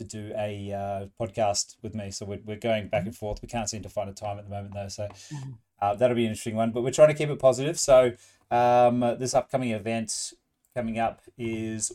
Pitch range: 105-120 Hz